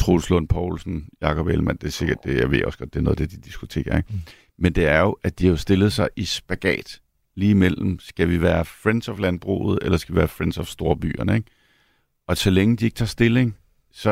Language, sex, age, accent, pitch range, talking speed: Danish, male, 50-69, native, 85-105 Hz, 235 wpm